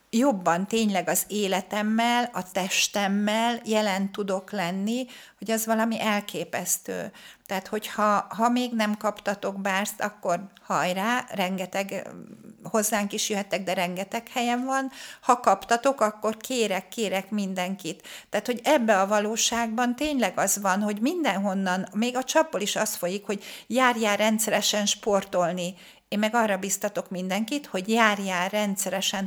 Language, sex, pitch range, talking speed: Hungarian, female, 195-230 Hz, 130 wpm